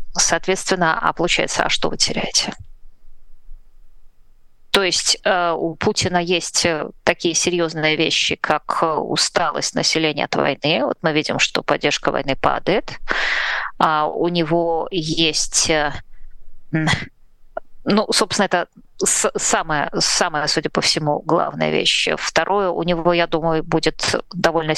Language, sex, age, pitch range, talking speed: Russian, female, 20-39, 150-170 Hz, 115 wpm